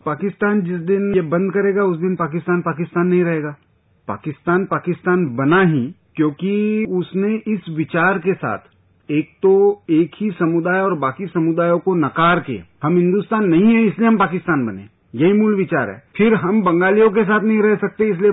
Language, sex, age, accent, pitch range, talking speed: Hindi, male, 40-59, native, 145-195 Hz, 175 wpm